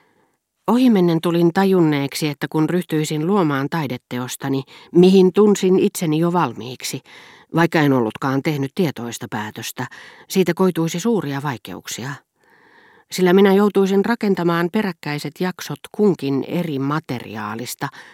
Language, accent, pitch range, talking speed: Finnish, native, 125-175 Hz, 105 wpm